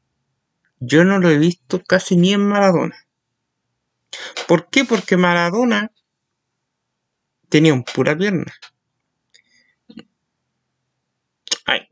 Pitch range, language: 130-180 Hz, Spanish